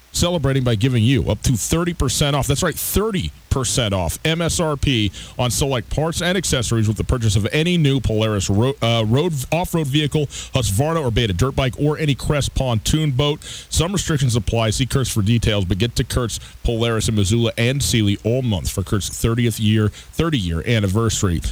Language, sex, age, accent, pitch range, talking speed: English, male, 40-59, American, 110-145 Hz, 185 wpm